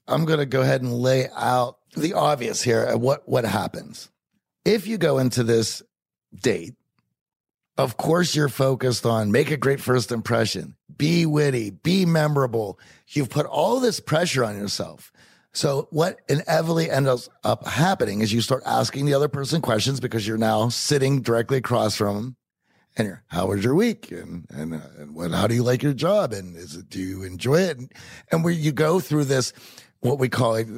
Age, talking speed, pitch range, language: 50-69, 190 wpm, 115-150 Hz, English